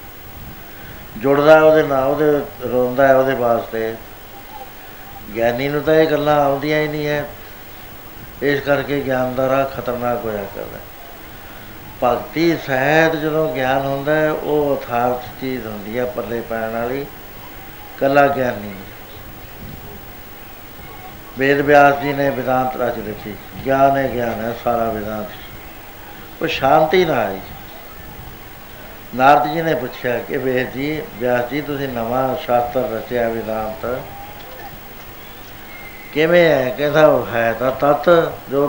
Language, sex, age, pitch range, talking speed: Punjabi, male, 60-79, 115-145 Hz, 120 wpm